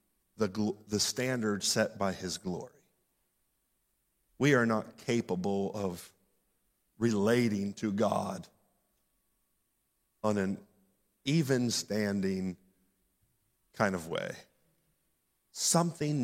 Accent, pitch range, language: American, 110-170 Hz, English